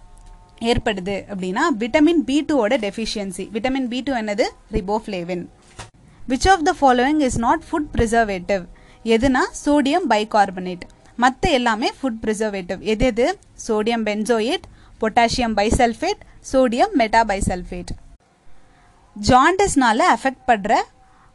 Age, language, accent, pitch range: 20-39, Tamil, native, 205-275 Hz